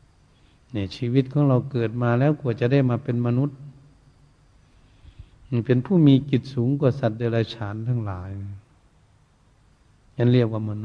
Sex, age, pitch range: male, 70-89, 110-135 Hz